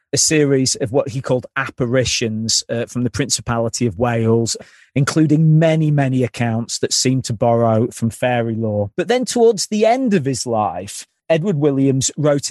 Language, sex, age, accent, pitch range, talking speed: English, male, 40-59, British, 120-155 Hz, 165 wpm